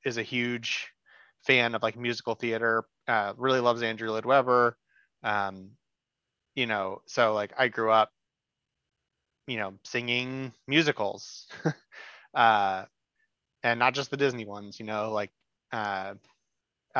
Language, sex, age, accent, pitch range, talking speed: English, male, 30-49, American, 110-135 Hz, 125 wpm